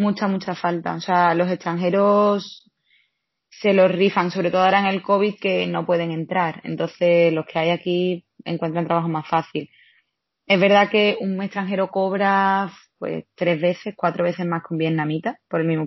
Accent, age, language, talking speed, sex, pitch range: Spanish, 20-39, Spanish, 175 wpm, female, 165-200 Hz